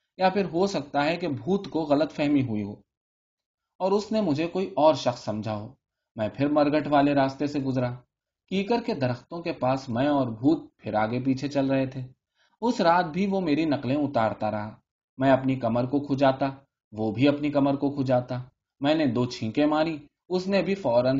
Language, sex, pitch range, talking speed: Urdu, male, 120-170 Hz, 200 wpm